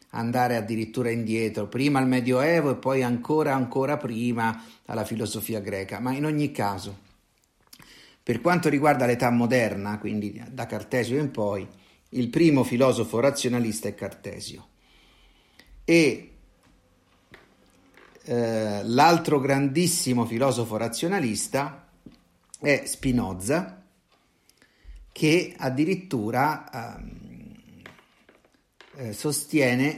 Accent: native